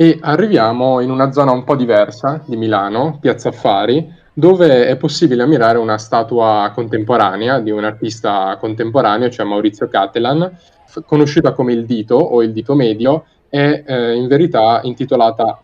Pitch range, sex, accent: 110-135 Hz, male, native